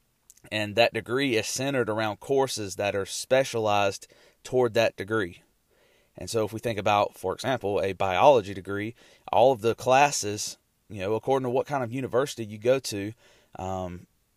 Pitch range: 105-125 Hz